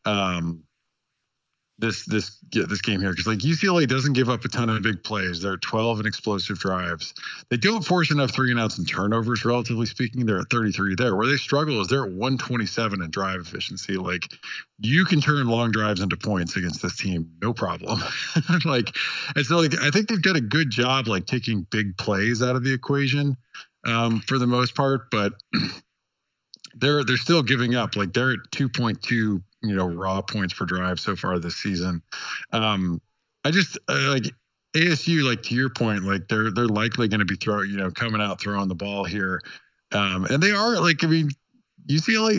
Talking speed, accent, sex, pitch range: 195 wpm, American, male, 100-135 Hz